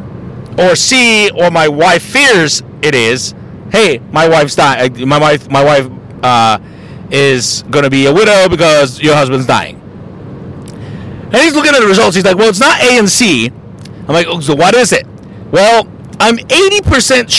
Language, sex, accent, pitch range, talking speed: English, male, American, 165-255 Hz, 175 wpm